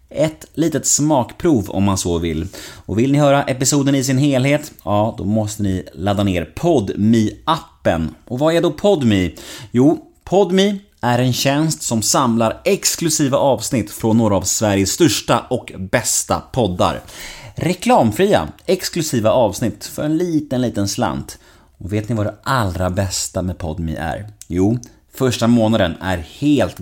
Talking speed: 150 wpm